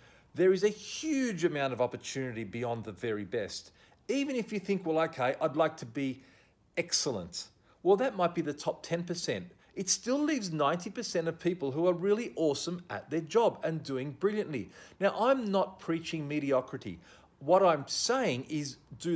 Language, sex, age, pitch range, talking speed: English, male, 40-59, 125-175 Hz, 170 wpm